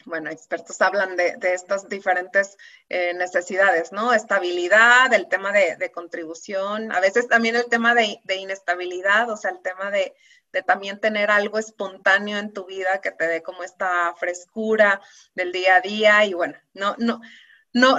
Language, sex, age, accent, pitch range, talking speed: Spanish, female, 30-49, Mexican, 190-240 Hz, 175 wpm